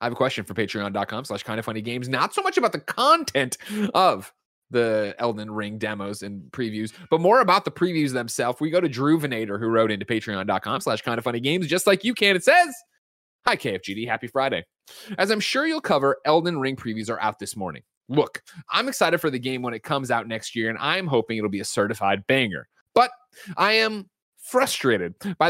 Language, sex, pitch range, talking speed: English, male, 115-180 Hz, 215 wpm